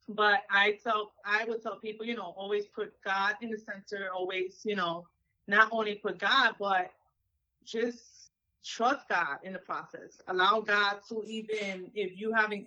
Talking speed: 175 wpm